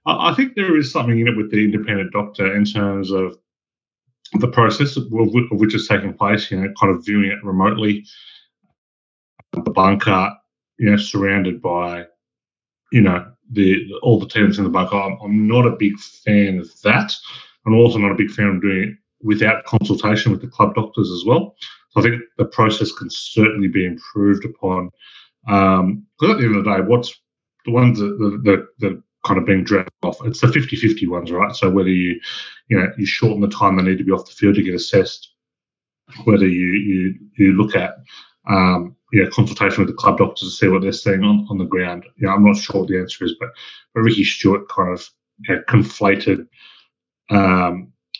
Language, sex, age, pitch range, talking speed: English, male, 30-49, 95-105 Hz, 205 wpm